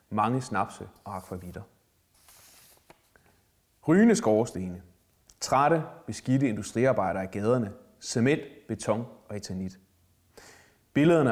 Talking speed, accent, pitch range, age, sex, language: 85 wpm, native, 95-130 Hz, 30-49, male, Danish